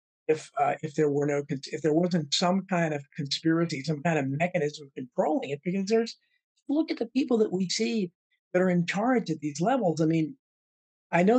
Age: 50-69